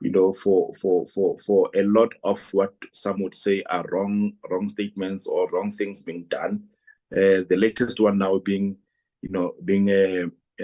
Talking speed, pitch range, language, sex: 185 wpm, 95-115 Hz, English, male